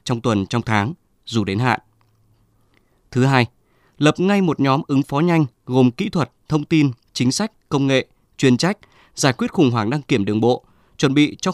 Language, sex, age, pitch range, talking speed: Vietnamese, male, 20-39, 115-155 Hz, 200 wpm